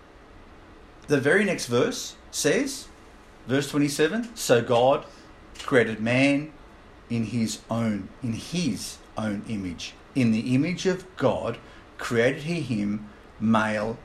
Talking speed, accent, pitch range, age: 115 wpm, Australian, 115-150 Hz, 50-69